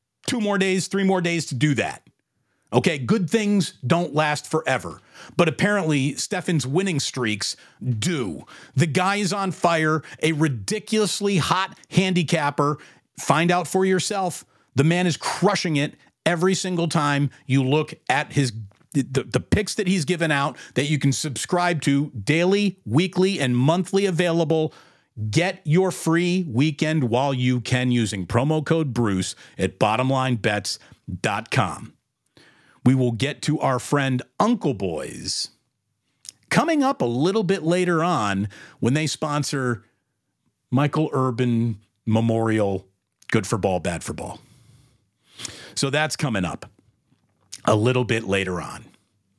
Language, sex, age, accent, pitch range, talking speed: English, male, 40-59, American, 120-180 Hz, 135 wpm